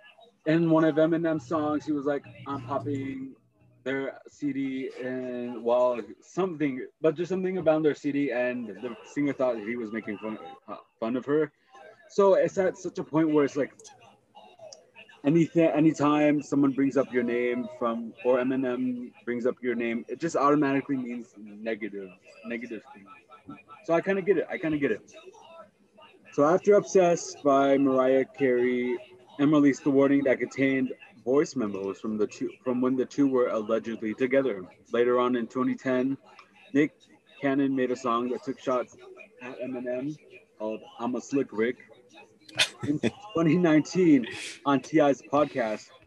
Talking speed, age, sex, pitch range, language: 160 wpm, 20-39, male, 120-150 Hz, English